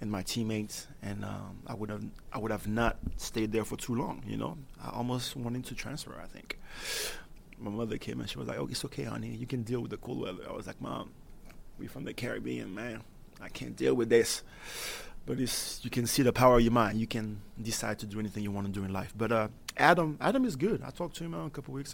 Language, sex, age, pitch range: English, male, 30-49, 100-120 Hz